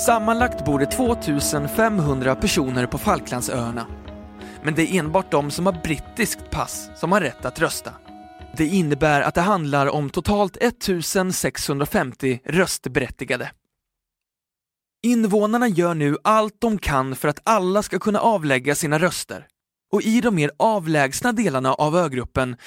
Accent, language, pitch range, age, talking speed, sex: native, Swedish, 135-205 Hz, 20-39, 140 wpm, male